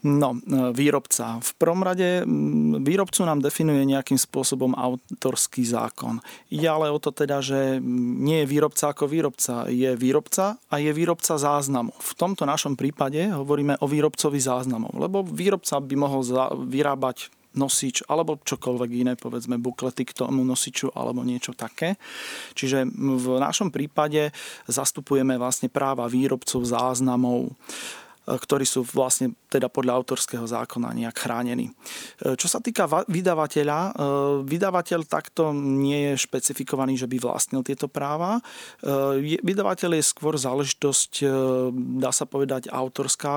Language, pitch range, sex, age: Slovak, 130-155 Hz, male, 40-59